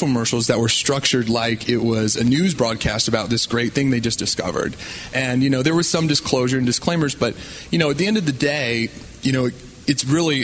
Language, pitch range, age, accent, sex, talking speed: English, 115-140 Hz, 30-49, American, male, 225 wpm